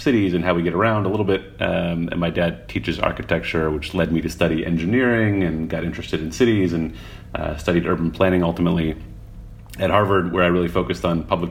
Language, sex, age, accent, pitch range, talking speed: English, male, 30-49, American, 80-95 Hz, 210 wpm